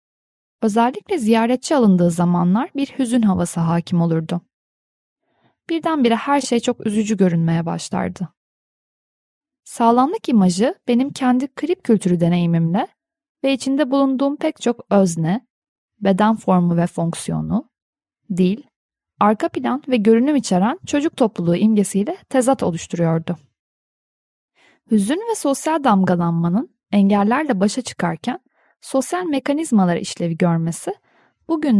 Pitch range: 180-270 Hz